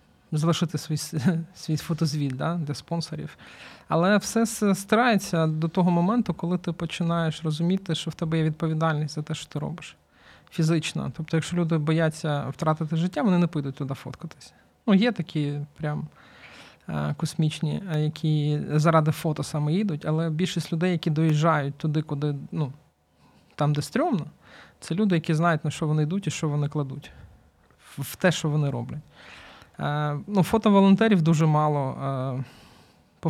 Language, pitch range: Ukrainian, 150-170 Hz